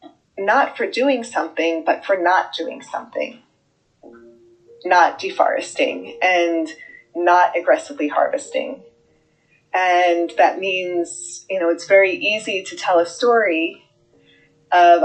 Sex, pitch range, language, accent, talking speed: female, 165-215 Hz, English, American, 110 wpm